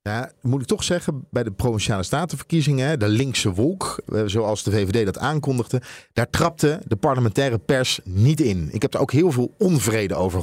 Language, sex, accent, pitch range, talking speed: Dutch, male, Dutch, 110-145 Hz, 185 wpm